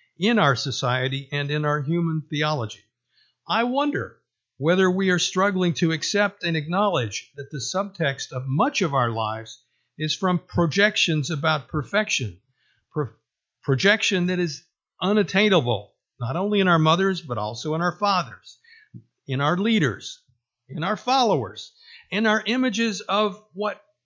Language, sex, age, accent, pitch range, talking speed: English, male, 50-69, American, 135-195 Hz, 140 wpm